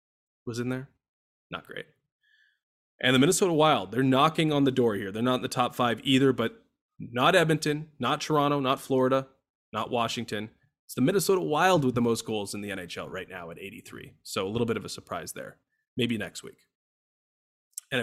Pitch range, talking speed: 110-135 Hz, 195 wpm